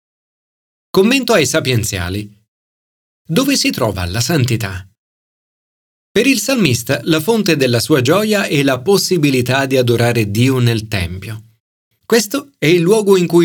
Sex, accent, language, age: male, native, Italian, 40-59